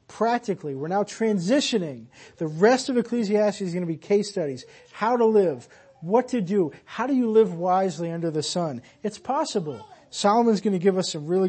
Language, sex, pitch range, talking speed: English, male, 160-225 Hz, 195 wpm